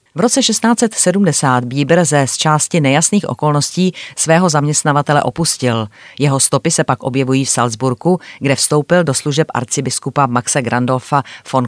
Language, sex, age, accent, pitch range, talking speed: Czech, female, 30-49, native, 130-155 Hz, 135 wpm